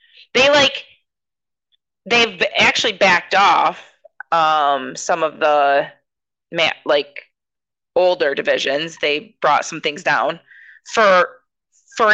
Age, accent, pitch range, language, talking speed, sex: 30-49, American, 170-260 Hz, English, 105 wpm, female